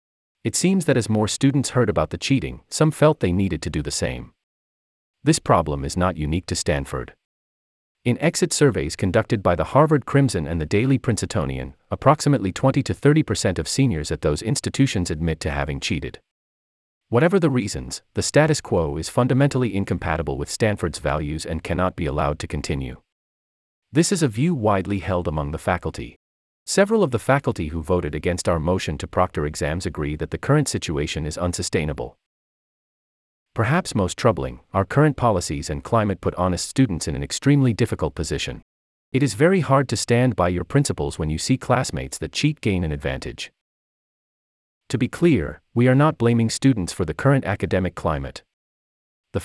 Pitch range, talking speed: 75-125 Hz, 170 wpm